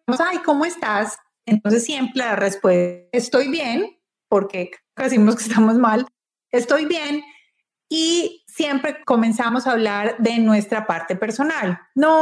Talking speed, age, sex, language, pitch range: 130 wpm, 30-49, female, Spanish, 205-270 Hz